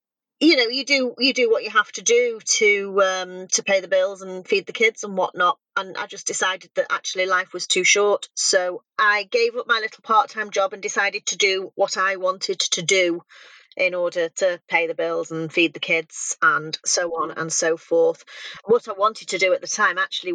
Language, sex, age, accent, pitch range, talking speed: English, female, 40-59, British, 175-225 Hz, 220 wpm